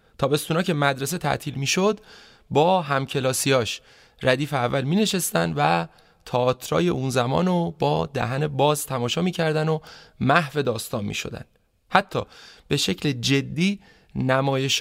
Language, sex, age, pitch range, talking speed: Persian, male, 30-49, 120-165 Hz, 120 wpm